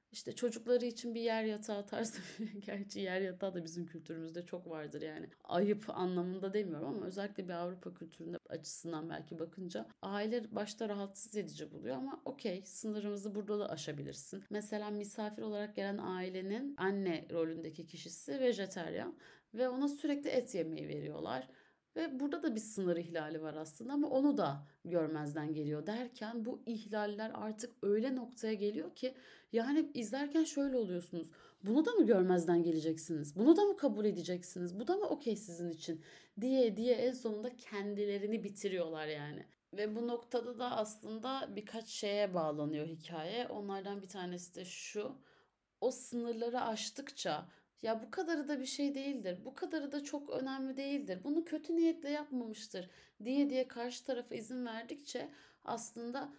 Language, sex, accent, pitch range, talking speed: Turkish, female, native, 180-250 Hz, 150 wpm